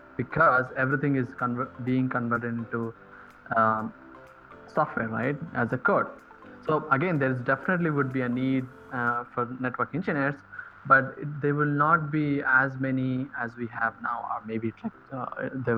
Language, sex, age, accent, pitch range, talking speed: English, male, 20-39, Indian, 115-135 Hz, 155 wpm